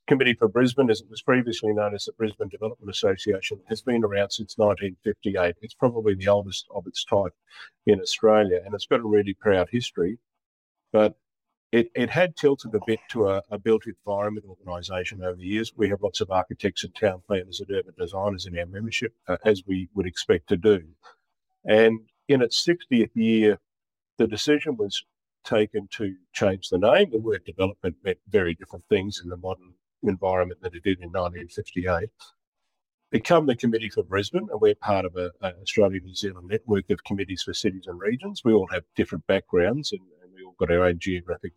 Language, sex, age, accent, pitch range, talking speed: English, male, 50-69, Australian, 95-115 Hz, 190 wpm